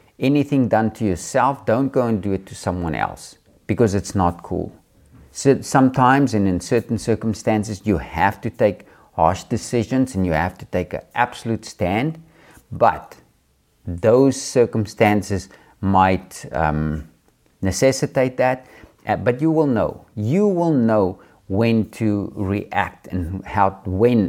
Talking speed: 140 wpm